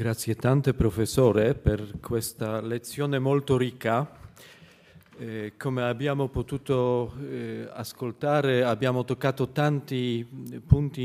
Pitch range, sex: 110-130 Hz, male